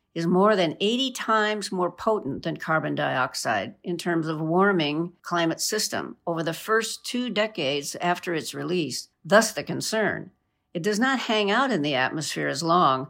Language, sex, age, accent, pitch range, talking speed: English, female, 50-69, American, 160-210 Hz, 170 wpm